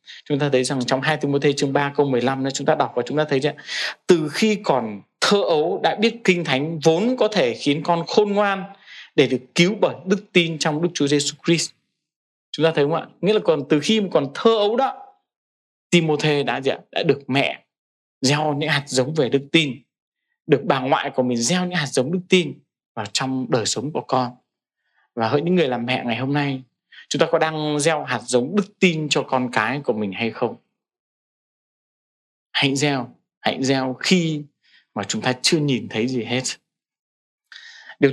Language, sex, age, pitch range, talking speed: Vietnamese, male, 20-39, 130-180 Hz, 200 wpm